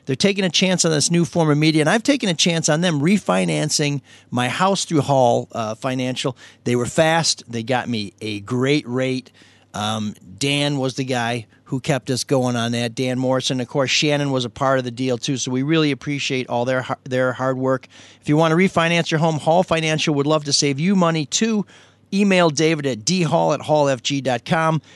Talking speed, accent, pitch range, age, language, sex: 210 wpm, American, 125-165 Hz, 40-59, English, male